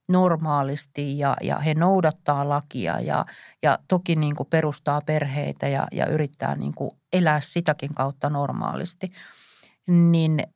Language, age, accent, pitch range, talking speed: Finnish, 50-69, native, 150-185 Hz, 110 wpm